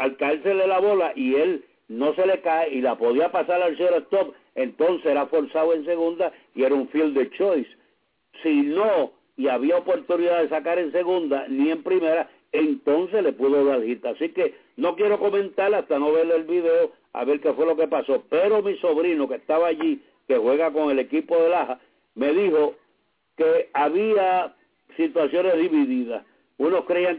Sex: male